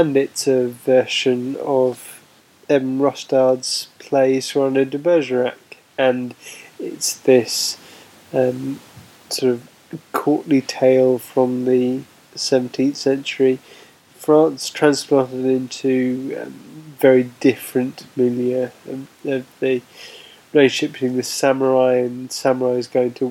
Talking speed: 115 wpm